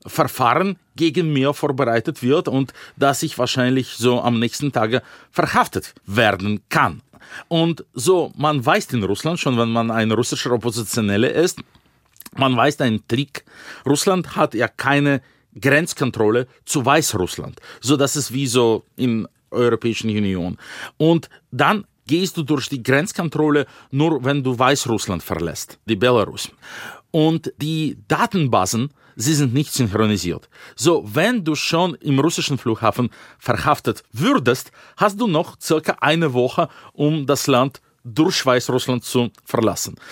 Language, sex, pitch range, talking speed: German, male, 120-155 Hz, 140 wpm